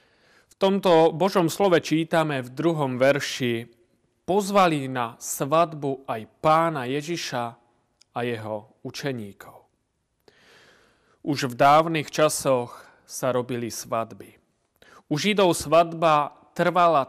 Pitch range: 125-165 Hz